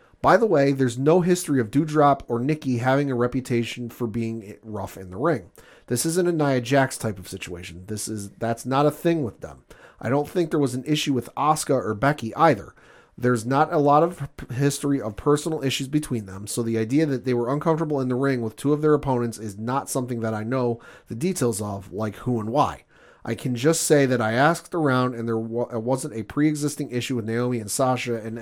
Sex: male